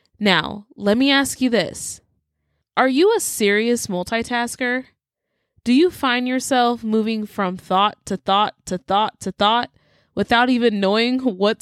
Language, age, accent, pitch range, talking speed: English, 20-39, American, 195-270 Hz, 145 wpm